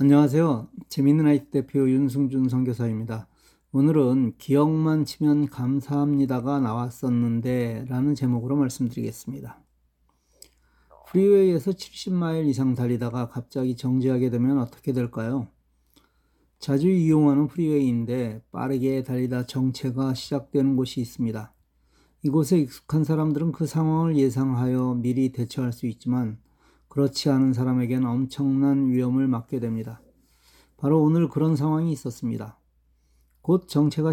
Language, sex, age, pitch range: Korean, male, 40-59, 120-150 Hz